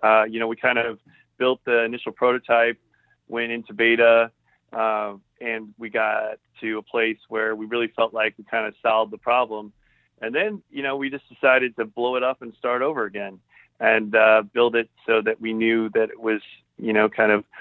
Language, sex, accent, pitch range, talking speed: English, male, American, 110-115 Hz, 210 wpm